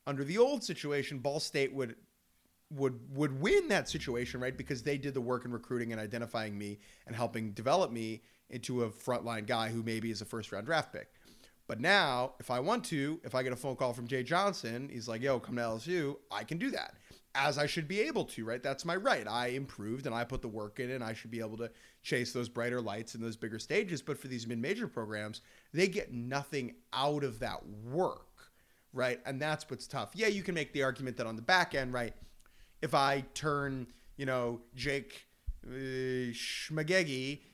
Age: 30-49